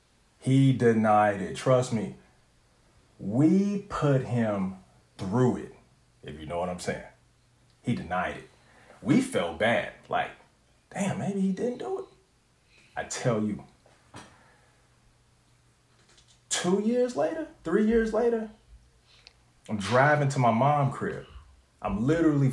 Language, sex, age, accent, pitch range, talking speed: English, male, 30-49, American, 105-140 Hz, 125 wpm